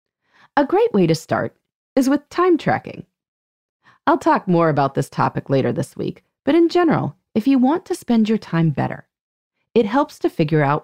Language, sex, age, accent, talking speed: English, female, 30-49, American, 190 wpm